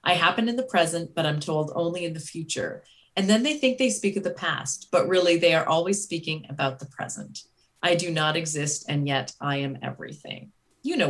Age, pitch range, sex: 30-49, 150-200 Hz, female